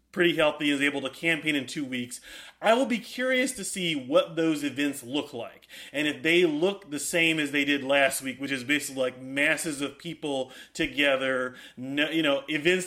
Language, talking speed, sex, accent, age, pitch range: English, 195 wpm, male, American, 30-49, 140-175 Hz